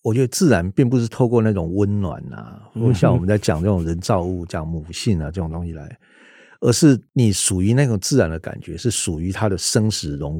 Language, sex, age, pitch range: Chinese, male, 50-69, 95-130 Hz